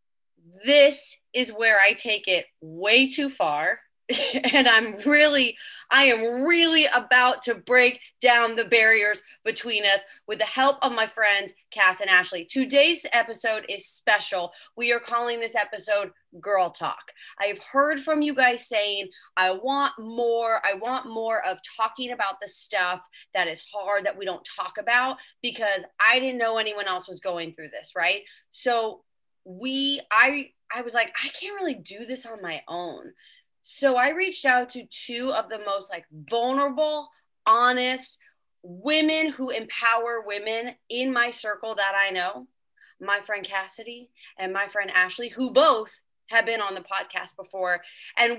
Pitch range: 195-260 Hz